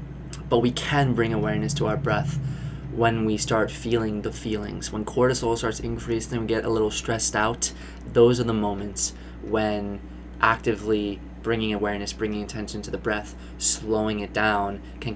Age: 20-39